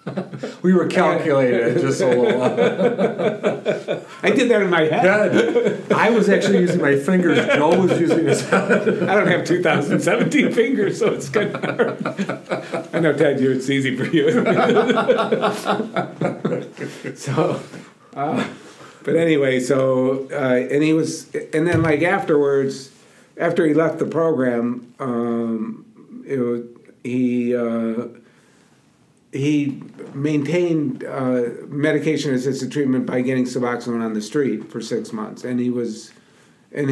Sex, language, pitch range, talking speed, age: male, English, 115-145 Hz, 140 wpm, 50-69